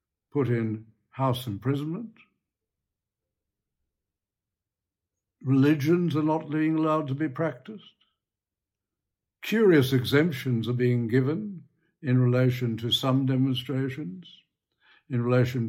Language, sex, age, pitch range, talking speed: English, male, 60-79, 115-140 Hz, 90 wpm